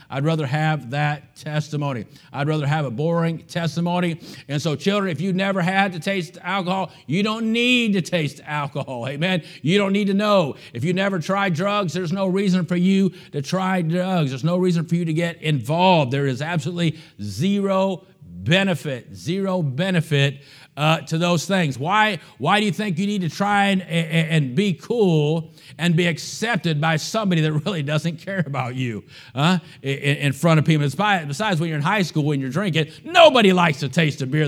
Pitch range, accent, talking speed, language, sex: 150-190 Hz, American, 195 wpm, English, male